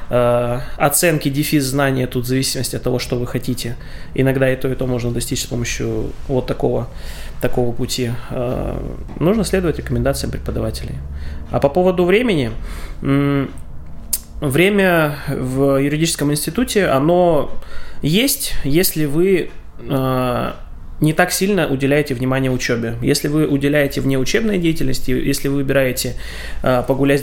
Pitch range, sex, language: 120-155 Hz, male, Russian